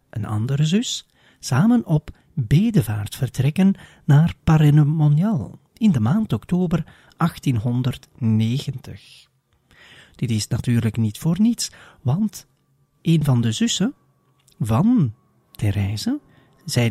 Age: 40-59